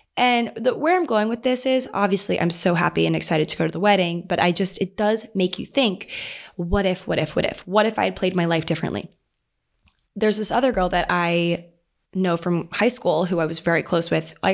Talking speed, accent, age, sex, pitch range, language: 240 wpm, American, 20-39, female, 170-215 Hz, English